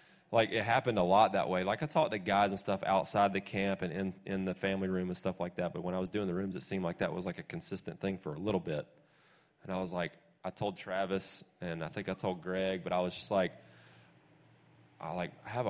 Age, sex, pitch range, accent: 20-39, male, 90-105 Hz, American